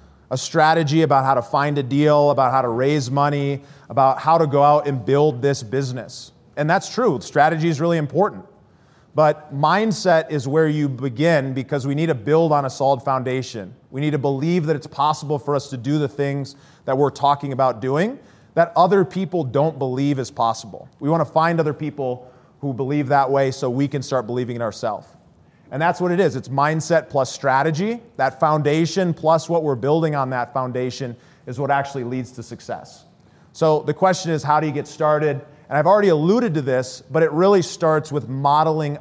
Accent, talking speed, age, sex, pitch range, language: American, 200 wpm, 30-49, male, 135-160 Hz, English